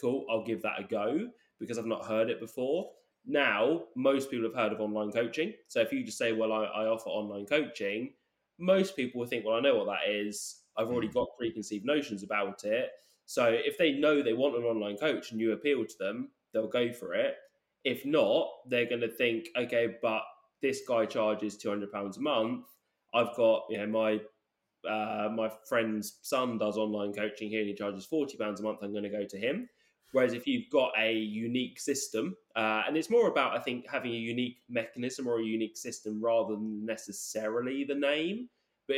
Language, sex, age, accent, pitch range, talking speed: English, male, 20-39, British, 110-135 Hz, 205 wpm